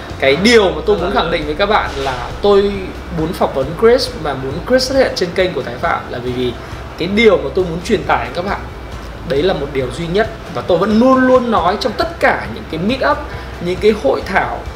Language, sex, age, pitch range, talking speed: Vietnamese, male, 20-39, 170-235 Hz, 250 wpm